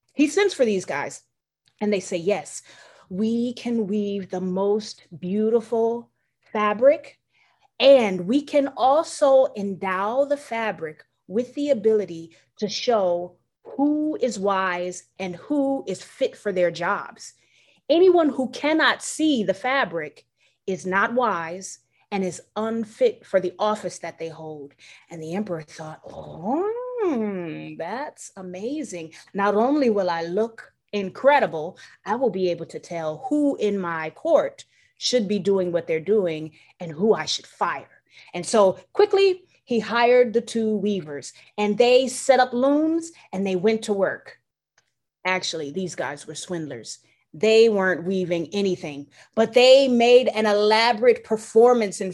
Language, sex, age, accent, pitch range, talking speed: English, female, 30-49, American, 185-255 Hz, 145 wpm